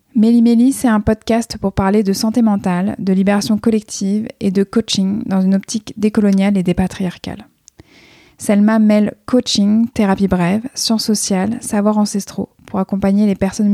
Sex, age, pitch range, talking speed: female, 20-39, 190-220 Hz, 150 wpm